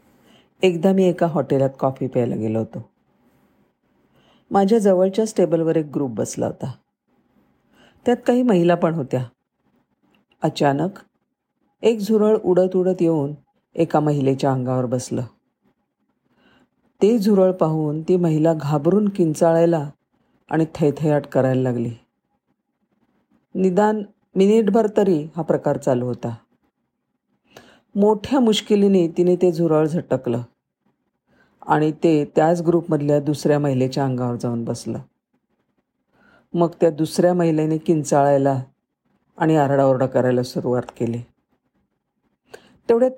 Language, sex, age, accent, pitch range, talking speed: Marathi, female, 50-69, native, 135-185 Hz, 105 wpm